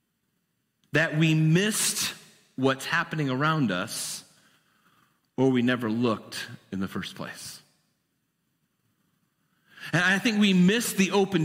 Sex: male